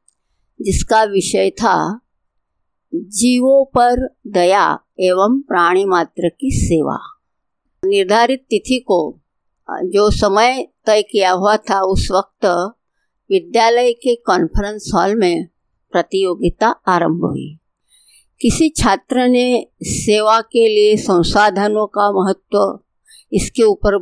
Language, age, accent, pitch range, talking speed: Hindi, 50-69, native, 190-245 Hz, 100 wpm